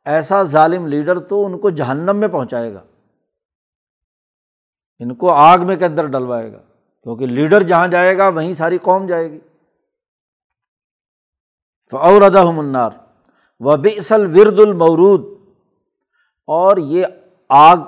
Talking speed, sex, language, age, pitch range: 125 wpm, male, Urdu, 60-79, 145-170 Hz